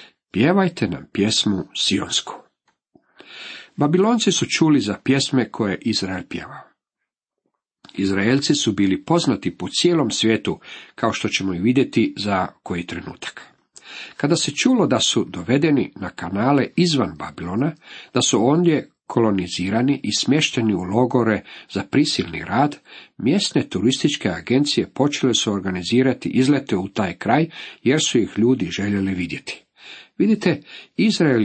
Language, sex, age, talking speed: Croatian, male, 50-69, 125 wpm